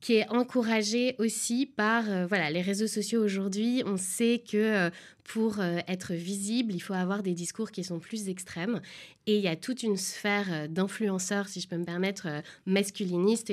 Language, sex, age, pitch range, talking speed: French, female, 20-39, 185-225 Hz, 195 wpm